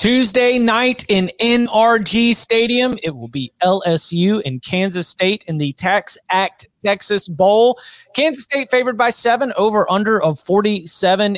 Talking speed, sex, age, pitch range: 140 wpm, male, 30-49, 165-210 Hz